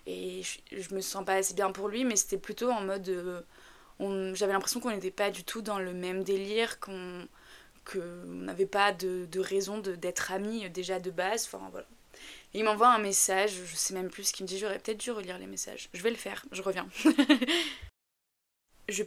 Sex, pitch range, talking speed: female, 180-210 Hz, 210 wpm